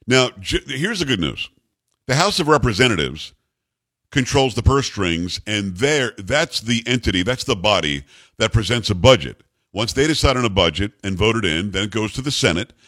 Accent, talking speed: American, 190 wpm